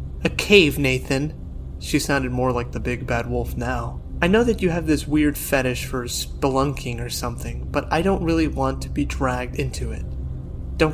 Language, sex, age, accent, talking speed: English, male, 30-49, American, 190 wpm